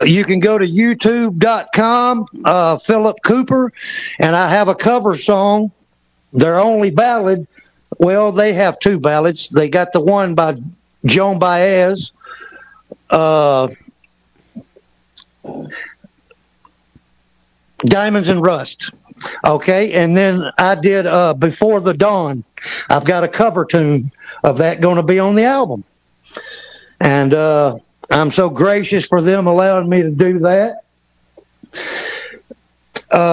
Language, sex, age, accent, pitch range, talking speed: English, male, 60-79, American, 165-215 Hz, 120 wpm